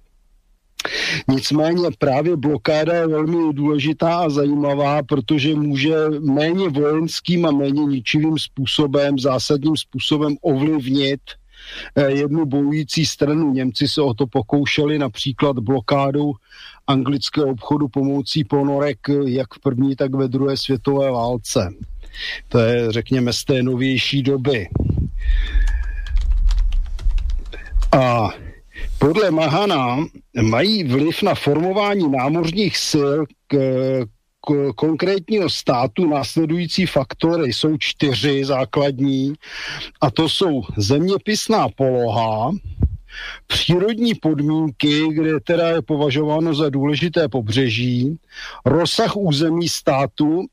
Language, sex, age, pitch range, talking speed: Slovak, male, 50-69, 135-160 Hz, 95 wpm